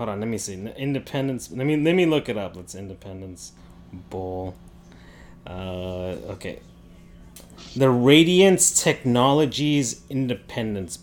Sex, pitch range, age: male, 90-130 Hz, 30-49